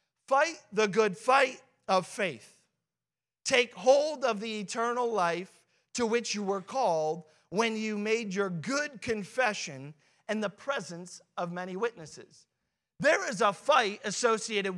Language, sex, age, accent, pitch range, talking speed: English, male, 40-59, American, 185-245 Hz, 140 wpm